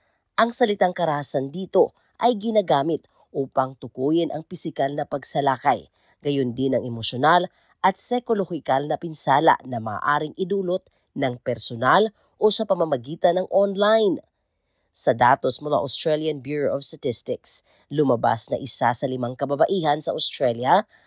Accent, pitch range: native, 135-180 Hz